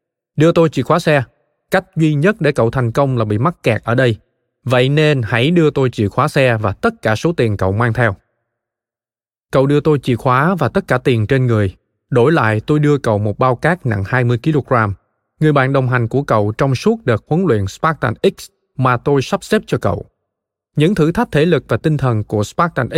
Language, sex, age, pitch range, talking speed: Vietnamese, male, 20-39, 115-155 Hz, 220 wpm